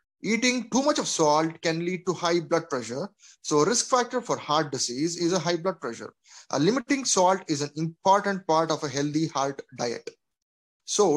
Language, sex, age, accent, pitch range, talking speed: English, male, 20-39, Indian, 155-200 Hz, 185 wpm